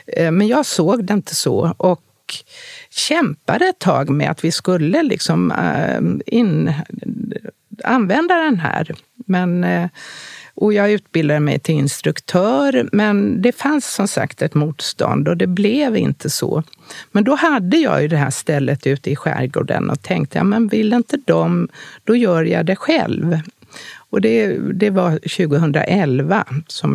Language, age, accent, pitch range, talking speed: Swedish, 50-69, native, 160-230 Hz, 150 wpm